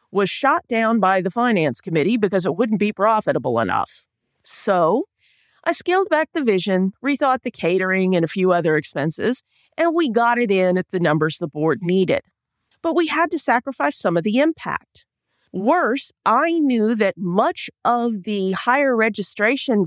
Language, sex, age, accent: English, female, 40-59, American